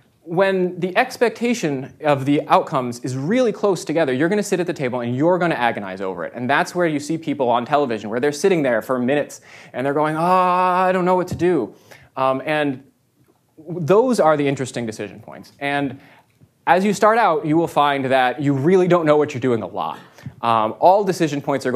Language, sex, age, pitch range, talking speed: English, male, 20-39, 125-170 Hz, 220 wpm